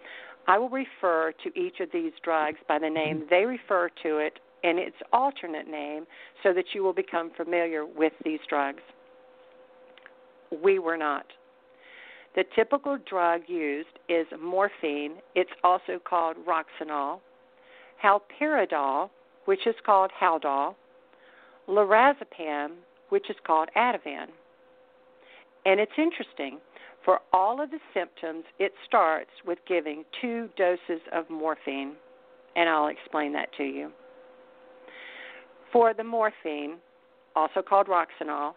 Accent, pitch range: American, 165-255 Hz